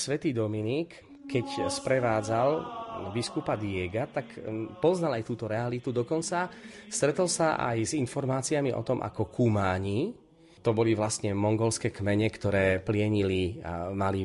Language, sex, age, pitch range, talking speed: Slovak, male, 30-49, 100-130 Hz, 125 wpm